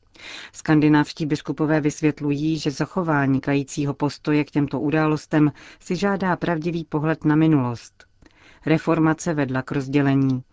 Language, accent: Czech, native